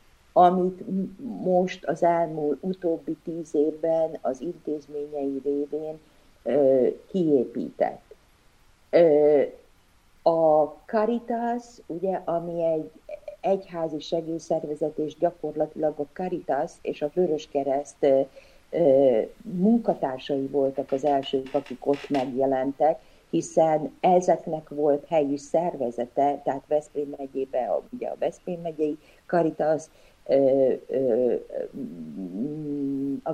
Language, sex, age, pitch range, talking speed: Hungarian, female, 50-69, 140-180 Hz, 85 wpm